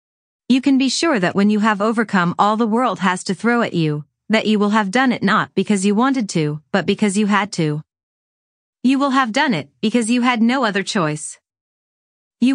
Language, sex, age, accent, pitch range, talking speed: English, female, 30-49, American, 150-235 Hz, 215 wpm